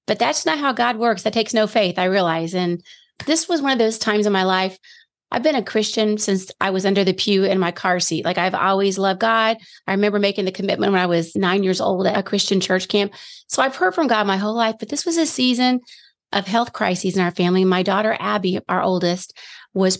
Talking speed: 245 wpm